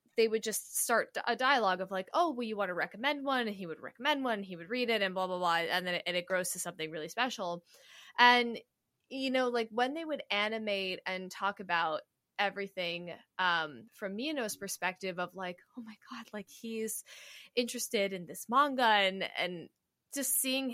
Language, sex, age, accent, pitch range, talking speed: English, female, 20-39, American, 180-245 Hz, 200 wpm